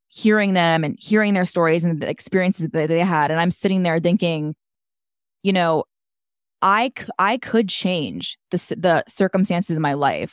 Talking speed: 170 wpm